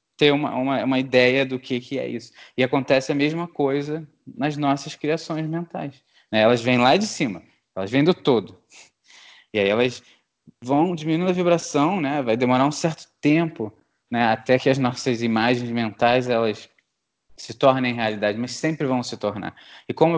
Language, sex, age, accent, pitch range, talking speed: Portuguese, male, 20-39, Brazilian, 115-150 Hz, 175 wpm